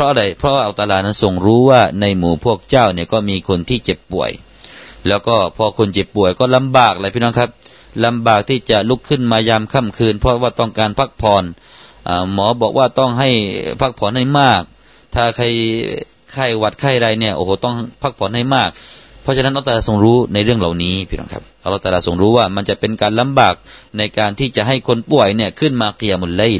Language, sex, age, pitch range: Thai, male, 30-49, 100-130 Hz